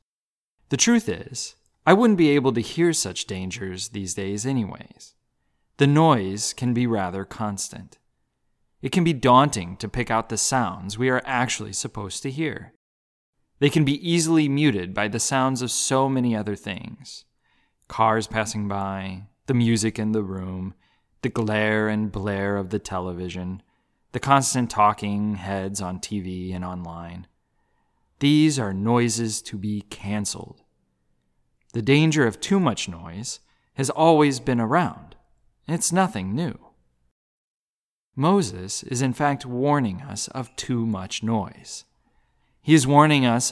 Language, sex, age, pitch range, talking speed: English, male, 20-39, 100-135 Hz, 145 wpm